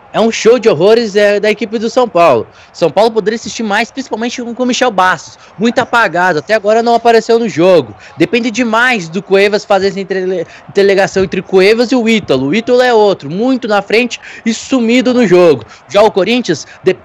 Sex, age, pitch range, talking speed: male, 20-39, 175-230 Hz, 195 wpm